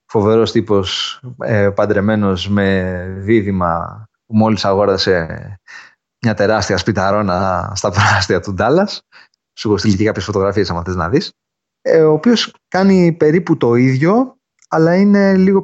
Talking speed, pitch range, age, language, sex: 125 wpm, 100-140 Hz, 30-49, English, male